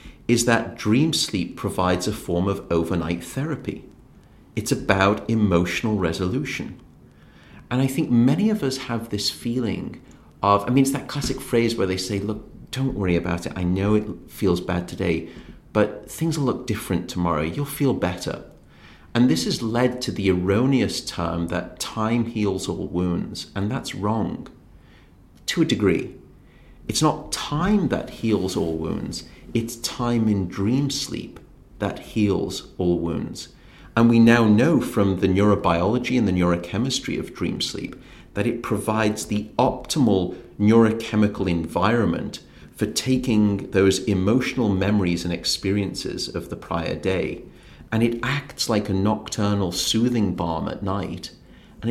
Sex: male